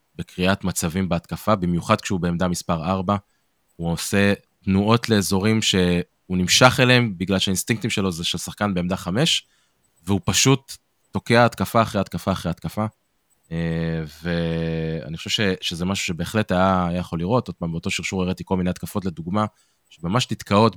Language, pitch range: Hebrew, 90-110 Hz